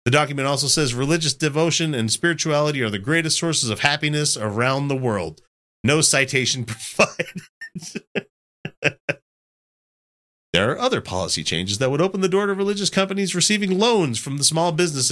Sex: male